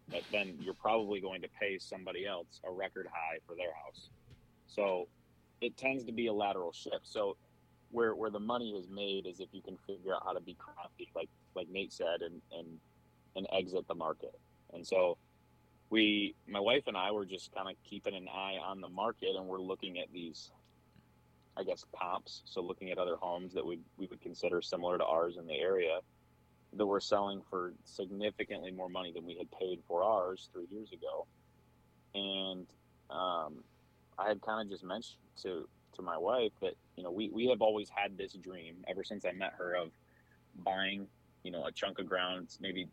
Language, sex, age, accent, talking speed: English, male, 30-49, American, 200 wpm